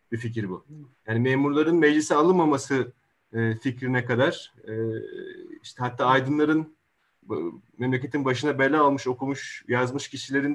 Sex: male